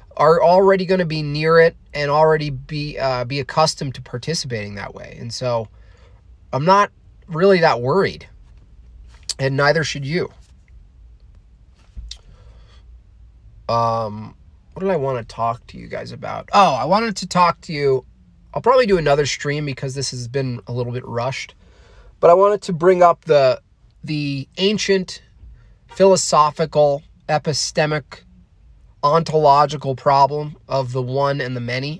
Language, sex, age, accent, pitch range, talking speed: English, male, 30-49, American, 120-155 Hz, 145 wpm